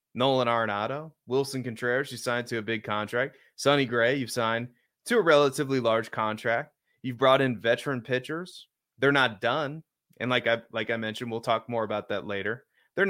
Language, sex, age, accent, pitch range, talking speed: English, male, 30-49, American, 115-140 Hz, 185 wpm